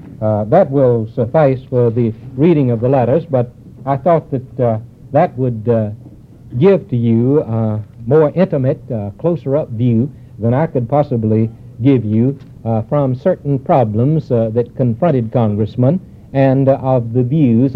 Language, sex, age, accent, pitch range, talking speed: English, male, 60-79, American, 120-145 Hz, 155 wpm